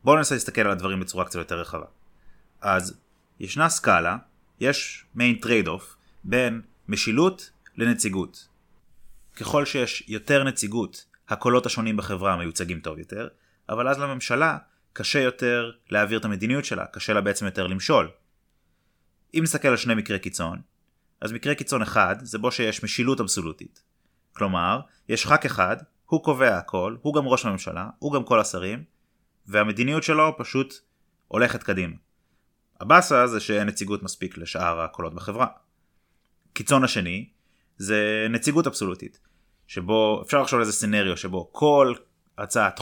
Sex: male